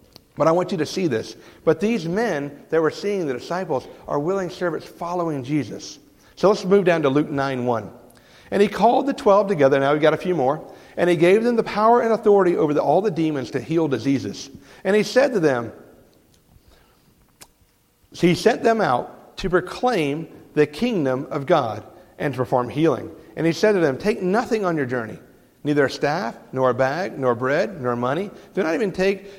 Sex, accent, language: male, American, English